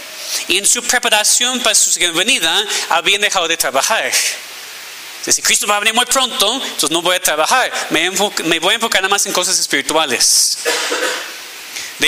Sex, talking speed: male, 185 wpm